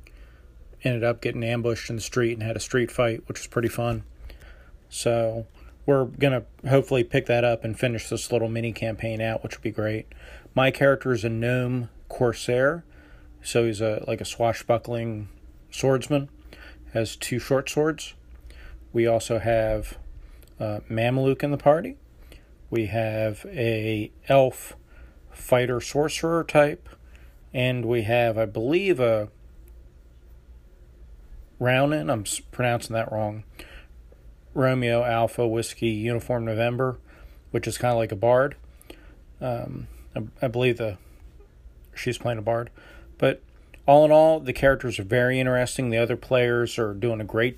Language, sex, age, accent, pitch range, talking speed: English, male, 40-59, American, 75-125 Hz, 145 wpm